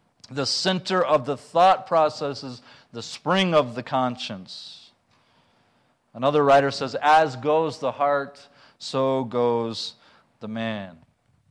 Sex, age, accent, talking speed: male, 40-59, American, 120 wpm